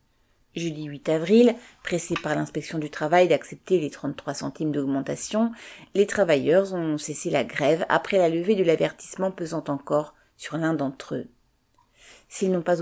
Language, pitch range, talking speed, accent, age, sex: French, 155-195 Hz, 155 wpm, French, 40-59, female